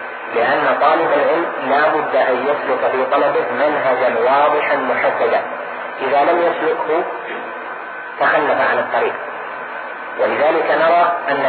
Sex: male